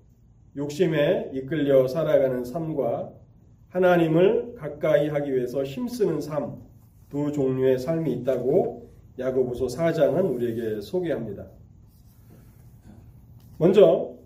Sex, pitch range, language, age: male, 115-160 Hz, Korean, 30-49